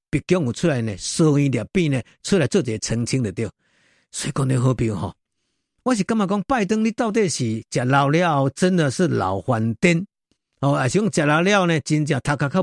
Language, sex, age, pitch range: Chinese, male, 50-69, 130-190 Hz